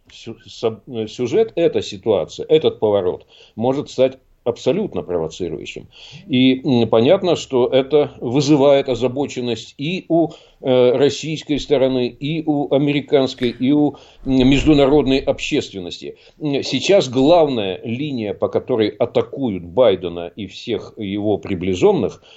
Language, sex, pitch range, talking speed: Russian, male, 115-140 Hz, 100 wpm